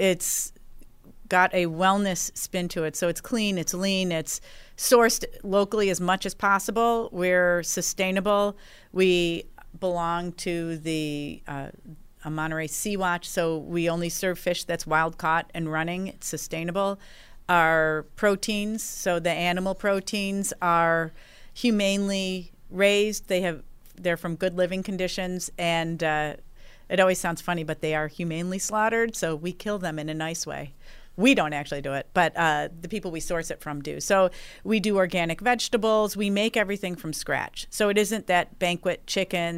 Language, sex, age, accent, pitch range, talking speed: English, female, 40-59, American, 160-195 Hz, 160 wpm